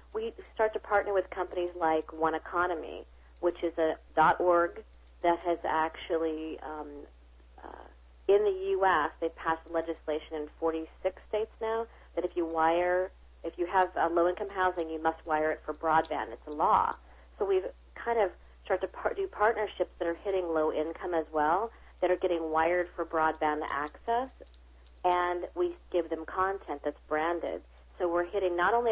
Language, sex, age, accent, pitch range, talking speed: English, female, 40-59, American, 155-185 Hz, 170 wpm